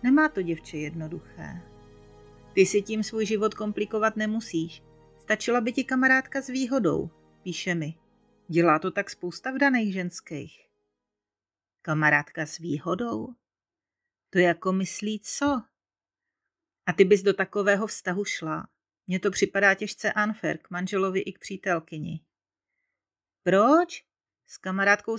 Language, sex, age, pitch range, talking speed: Czech, female, 40-59, 165-220 Hz, 125 wpm